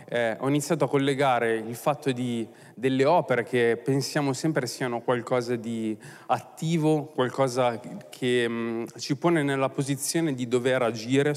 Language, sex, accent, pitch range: Italian, male, native, 120-150 Hz